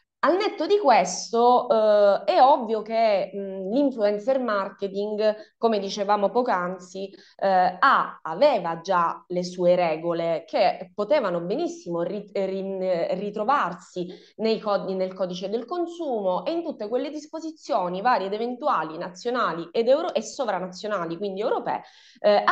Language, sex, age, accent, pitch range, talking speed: Italian, female, 20-39, native, 180-270 Hz, 110 wpm